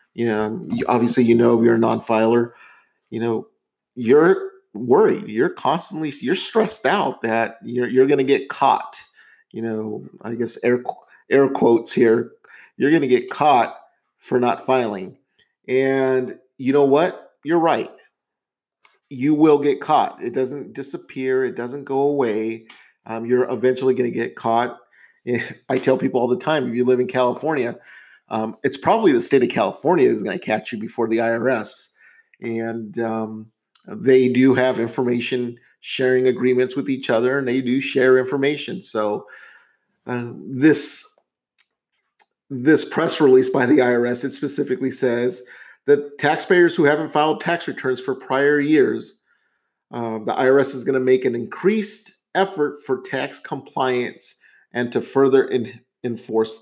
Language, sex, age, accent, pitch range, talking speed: English, male, 40-59, American, 120-140 Hz, 155 wpm